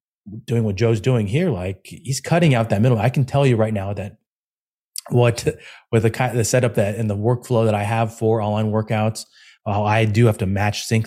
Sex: male